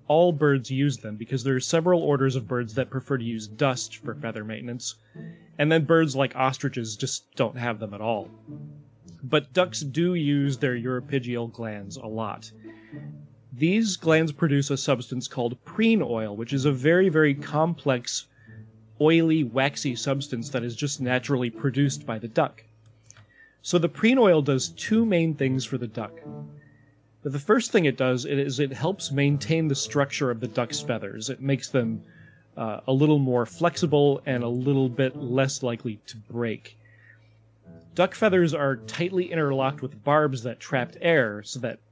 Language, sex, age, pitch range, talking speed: English, male, 30-49, 115-150 Hz, 170 wpm